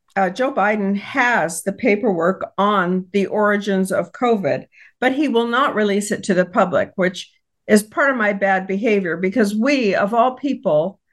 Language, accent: English, American